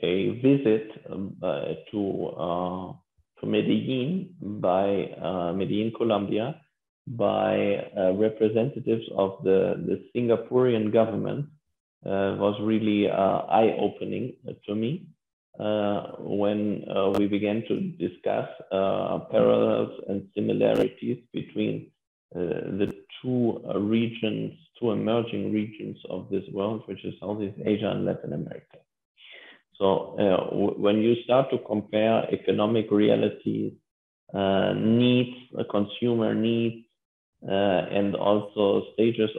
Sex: male